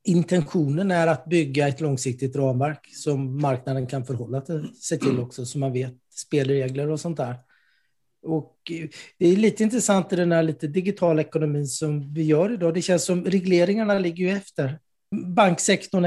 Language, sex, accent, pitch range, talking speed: Swedish, male, native, 140-180 Hz, 155 wpm